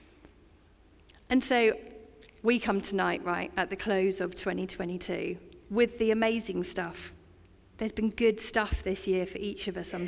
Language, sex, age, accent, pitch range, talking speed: English, female, 40-59, British, 185-250 Hz, 155 wpm